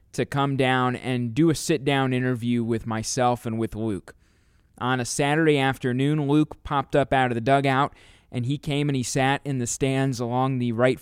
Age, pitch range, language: 20-39, 115-145 Hz, English